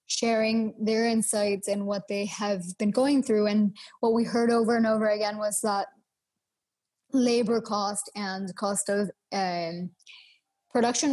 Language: English